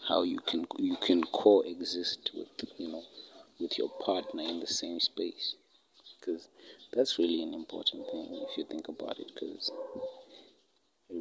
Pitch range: 260-355 Hz